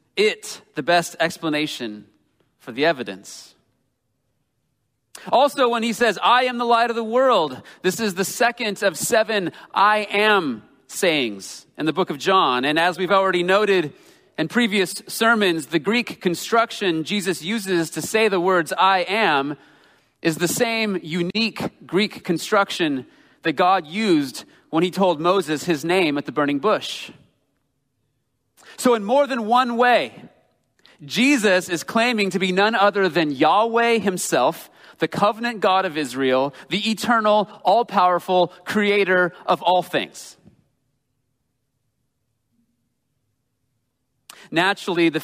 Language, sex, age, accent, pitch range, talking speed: English, male, 30-49, American, 140-205 Hz, 135 wpm